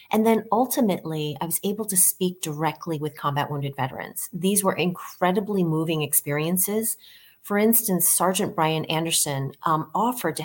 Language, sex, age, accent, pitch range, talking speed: English, female, 30-49, American, 155-195 Hz, 150 wpm